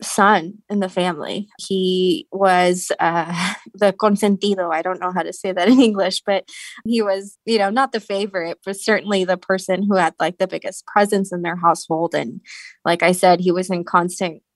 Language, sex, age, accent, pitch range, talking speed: English, female, 20-39, American, 170-195 Hz, 195 wpm